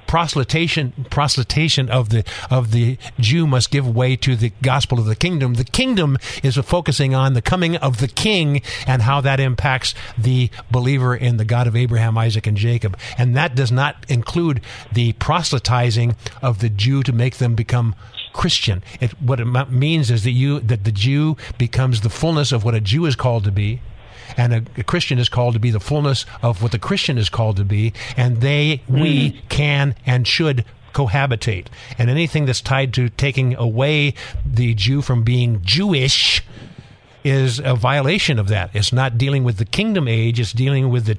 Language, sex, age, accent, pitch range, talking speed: English, male, 50-69, American, 115-135 Hz, 190 wpm